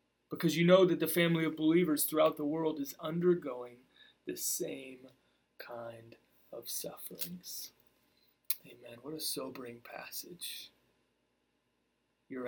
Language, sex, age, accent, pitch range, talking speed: English, male, 30-49, American, 120-165 Hz, 115 wpm